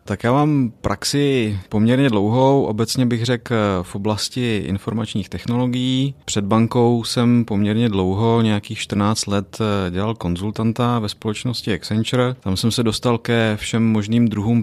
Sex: male